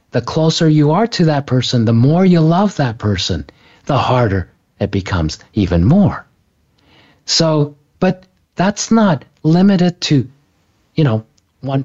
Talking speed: 140 wpm